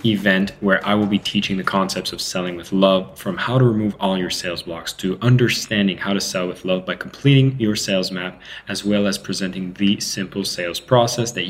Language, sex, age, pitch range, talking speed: English, male, 20-39, 95-115 Hz, 215 wpm